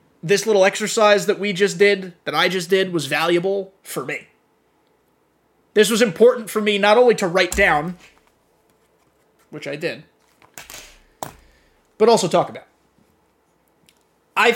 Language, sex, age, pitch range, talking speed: English, male, 20-39, 155-220 Hz, 135 wpm